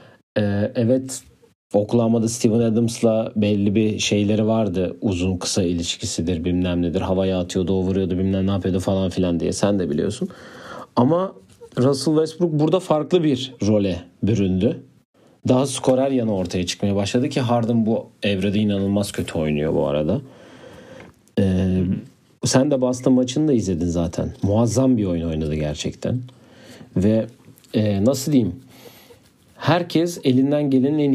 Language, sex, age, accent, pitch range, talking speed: Turkish, male, 50-69, native, 95-130 Hz, 135 wpm